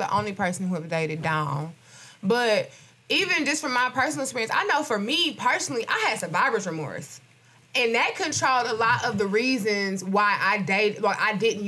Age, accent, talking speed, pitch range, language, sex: 20-39, American, 190 wpm, 200-295 Hz, English, female